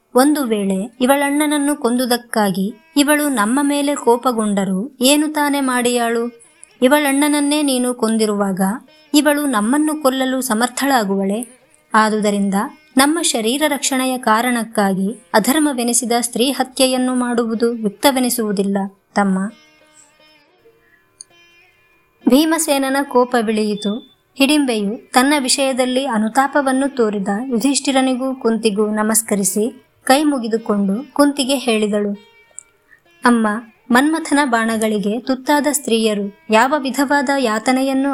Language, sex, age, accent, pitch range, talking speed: English, male, 20-39, Indian, 220-275 Hz, 80 wpm